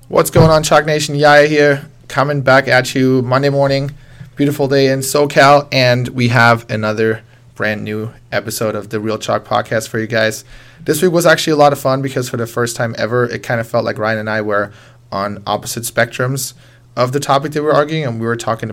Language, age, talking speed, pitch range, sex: English, 20-39, 220 wpm, 115-135 Hz, male